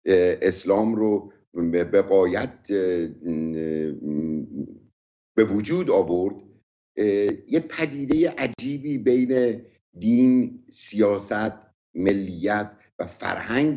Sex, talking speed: male, 70 wpm